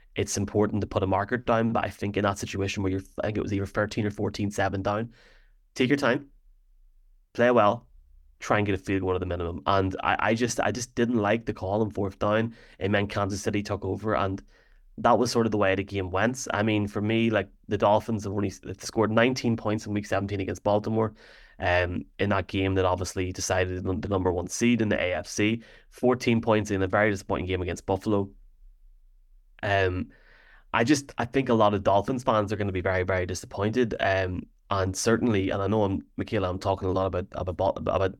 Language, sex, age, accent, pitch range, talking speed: English, male, 20-39, Irish, 95-110 Hz, 220 wpm